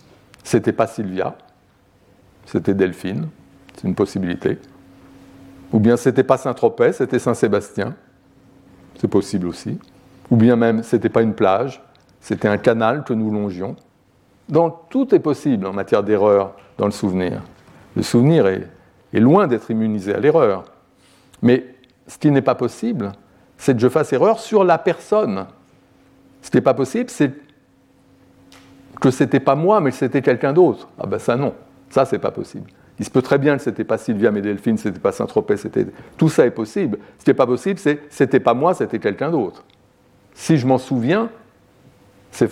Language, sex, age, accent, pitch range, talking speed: French, male, 60-79, French, 100-135 Hz, 180 wpm